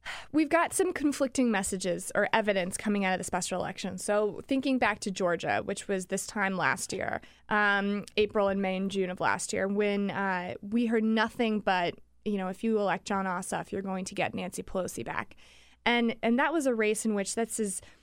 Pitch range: 195-230 Hz